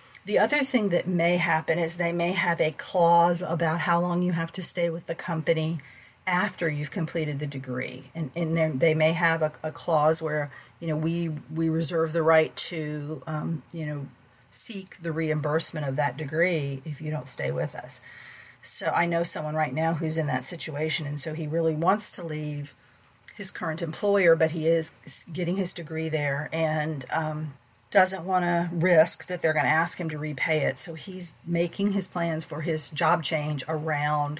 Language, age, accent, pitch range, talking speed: English, 40-59, American, 150-170 Hz, 195 wpm